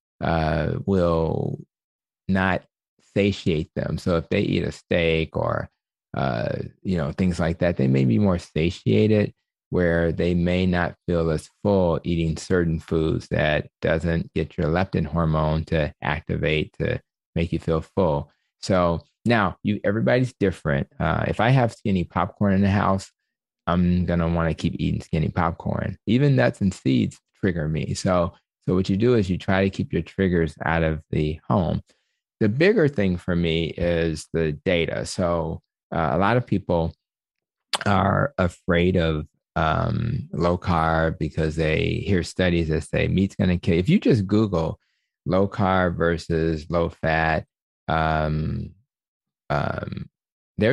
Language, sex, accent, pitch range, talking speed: English, male, American, 80-95 Hz, 155 wpm